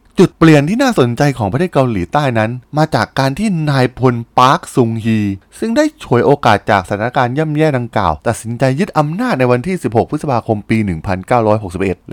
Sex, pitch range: male, 105-155 Hz